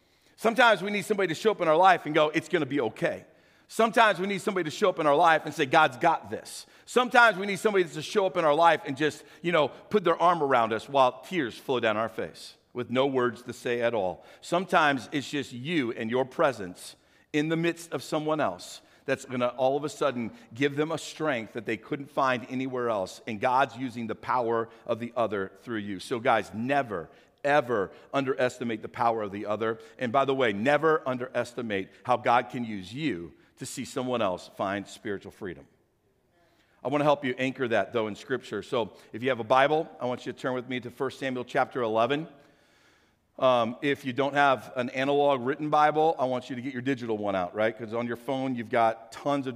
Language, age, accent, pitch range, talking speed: English, 50-69, American, 120-150 Hz, 225 wpm